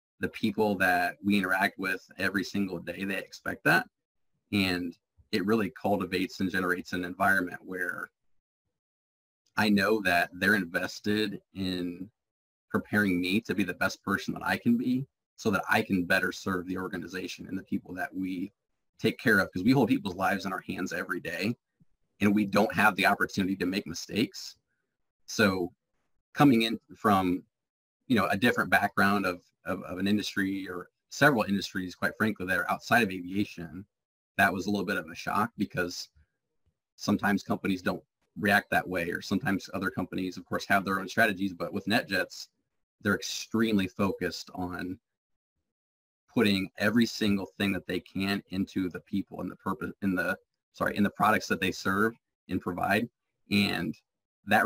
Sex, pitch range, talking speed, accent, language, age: male, 90-100 Hz, 170 wpm, American, English, 30-49